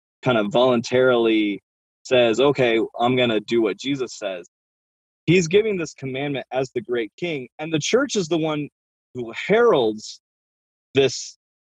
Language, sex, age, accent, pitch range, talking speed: English, male, 20-39, American, 100-135 Hz, 150 wpm